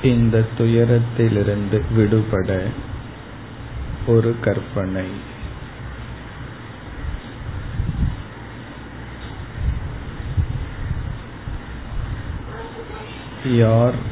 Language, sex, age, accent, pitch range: Tamil, male, 50-69, native, 105-120 Hz